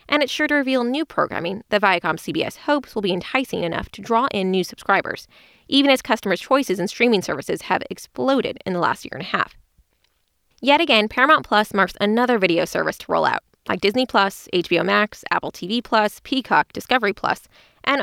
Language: English